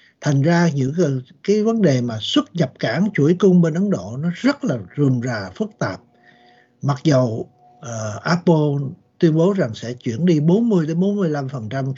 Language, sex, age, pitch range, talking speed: Vietnamese, male, 60-79, 130-180 Hz, 170 wpm